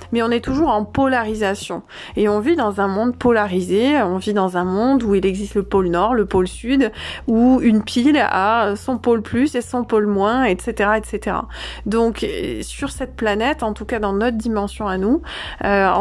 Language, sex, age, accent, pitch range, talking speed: French, female, 20-39, French, 205-250 Hz, 200 wpm